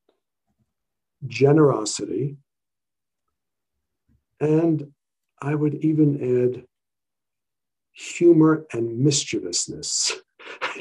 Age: 50-69